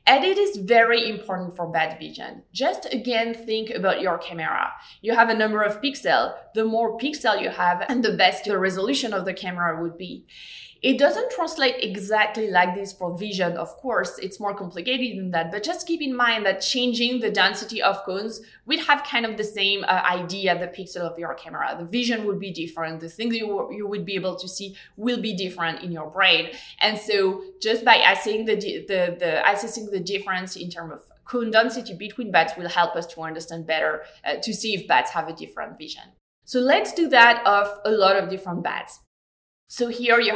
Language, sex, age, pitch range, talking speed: English, female, 20-39, 185-235 Hz, 210 wpm